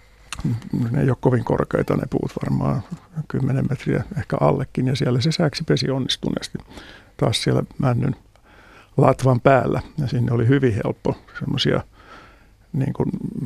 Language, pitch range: Finnish, 120-140 Hz